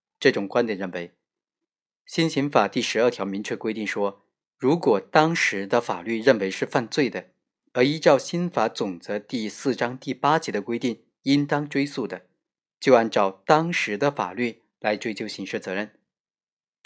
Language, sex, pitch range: Chinese, male, 110-145 Hz